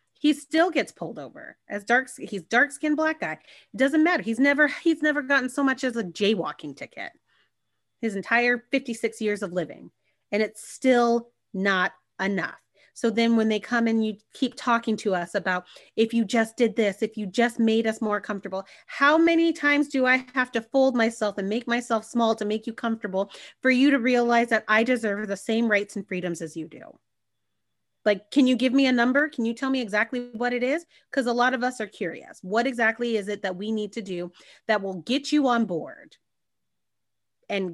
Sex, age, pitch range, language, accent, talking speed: female, 30-49, 205-260 Hz, English, American, 210 wpm